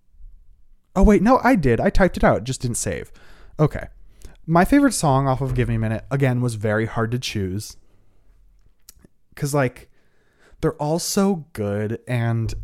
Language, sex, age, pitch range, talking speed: English, male, 20-39, 100-135 Hz, 165 wpm